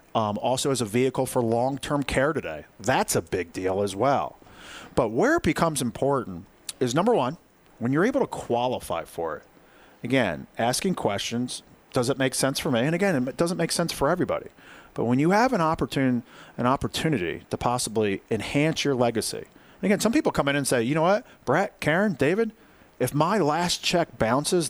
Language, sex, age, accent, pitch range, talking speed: English, male, 40-59, American, 115-150 Hz, 185 wpm